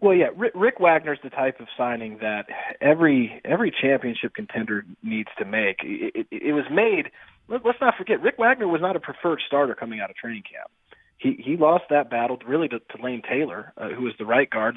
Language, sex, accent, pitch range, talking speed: English, male, American, 130-180 Hz, 220 wpm